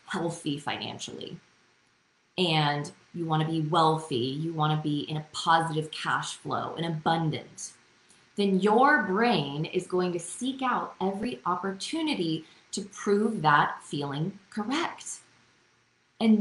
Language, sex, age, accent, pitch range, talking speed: English, female, 20-39, American, 150-205 Hz, 130 wpm